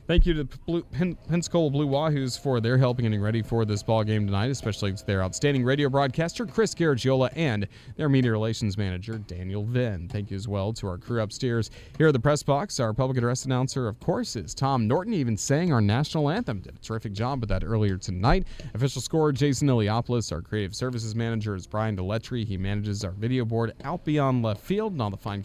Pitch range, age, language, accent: 110-150 Hz, 30-49, English, American